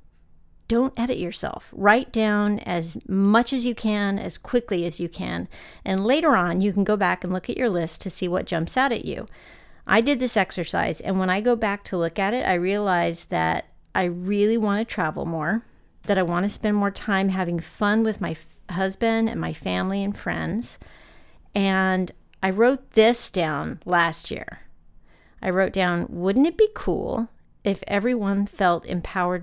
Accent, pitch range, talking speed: American, 175-230 Hz, 185 wpm